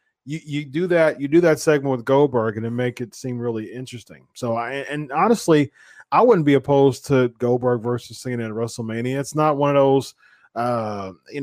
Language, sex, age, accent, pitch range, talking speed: English, male, 30-49, American, 120-145 Hz, 200 wpm